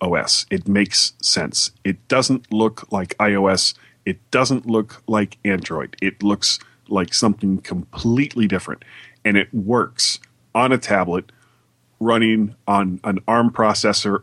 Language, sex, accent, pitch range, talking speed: English, male, American, 105-130 Hz, 130 wpm